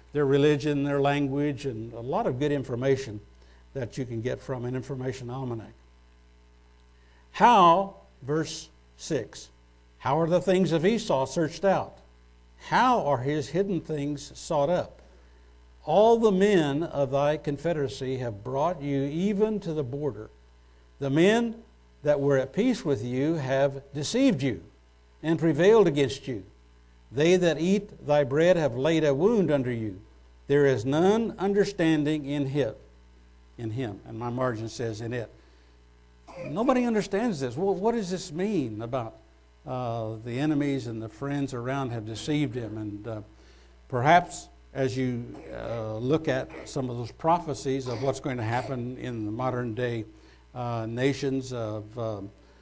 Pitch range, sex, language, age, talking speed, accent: 110-150 Hz, male, English, 60-79, 150 wpm, American